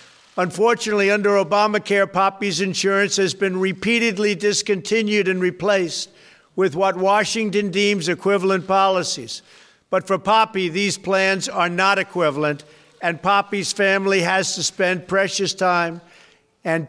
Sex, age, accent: male, 60-79, American